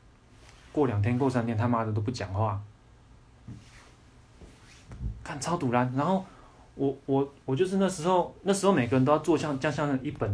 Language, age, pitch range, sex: Chinese, 20-39, 110-145 Hz, male